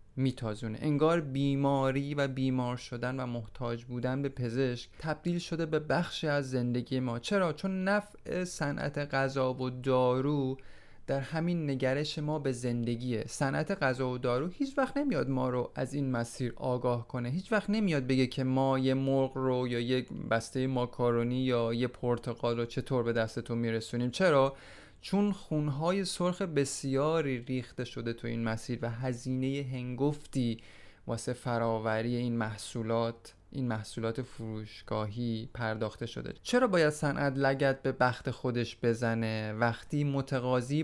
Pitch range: 120-140 Hz